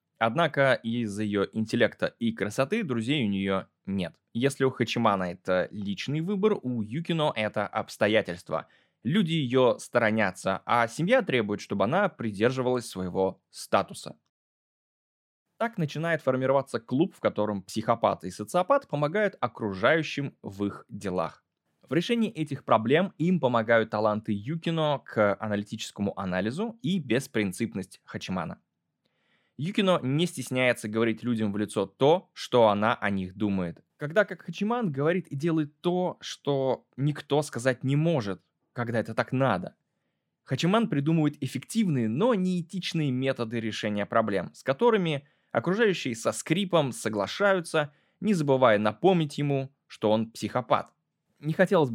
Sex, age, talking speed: male, 20-39, 130 wpm